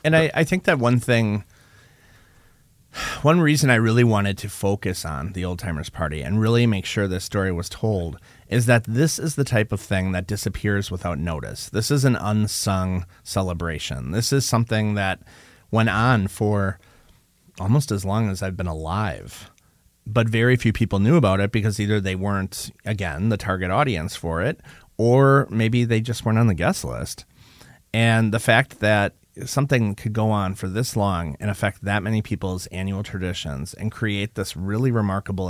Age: 30-49